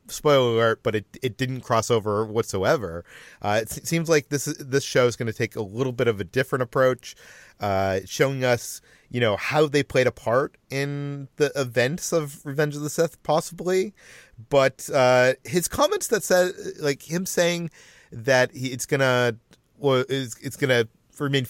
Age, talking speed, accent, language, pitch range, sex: 30-49, 185 wpm, American, English, 115-145 Hz, male